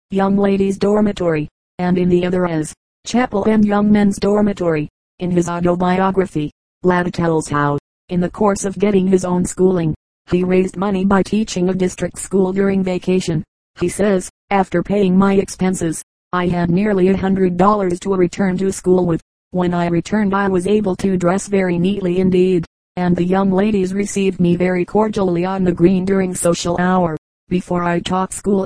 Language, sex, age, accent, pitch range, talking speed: English, female, 30-49, American, 180-200 Hz, 175 wpm